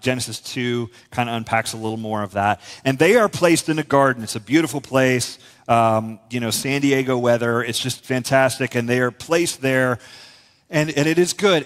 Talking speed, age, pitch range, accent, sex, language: 205 wpm, 30-49, 115-140 Hz, American, male, English